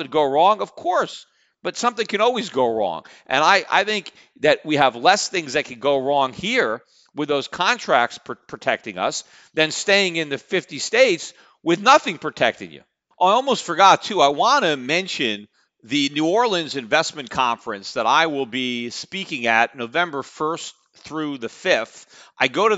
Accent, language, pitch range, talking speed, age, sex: American, English, 135-170 Hz, 175 wpm, 40-59, male